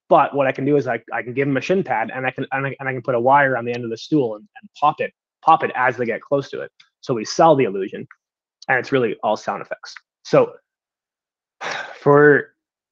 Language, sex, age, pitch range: English, male, 20-39, 125-165 Hz